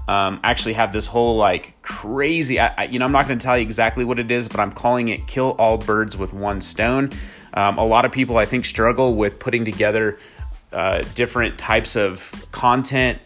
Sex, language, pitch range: male, English, 105-130 Hz